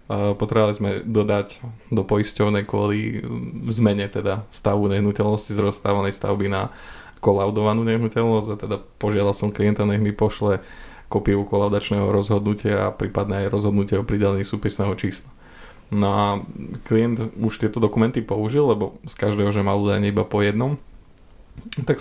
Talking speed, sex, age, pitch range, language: 140 wpm, male, 20-39, 105-115 Hz, Slovak